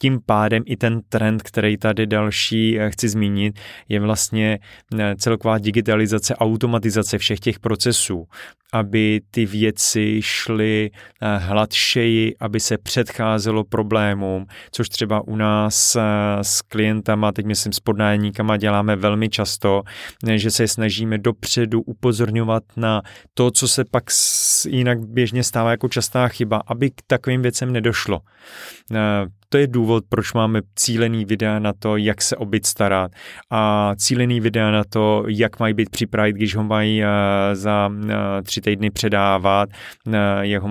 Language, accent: Czech, native